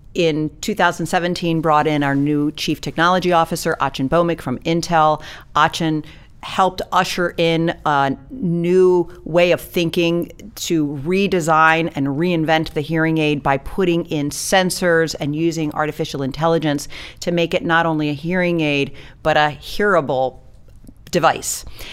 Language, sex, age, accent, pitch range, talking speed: English, female, 40-59, American, 150-185 Hz, 135 wpm